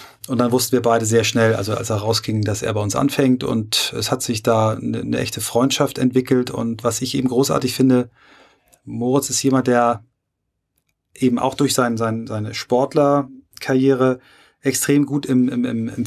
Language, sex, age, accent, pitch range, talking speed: German, male, 30-49, German, 115-135 Hz, 180 wpm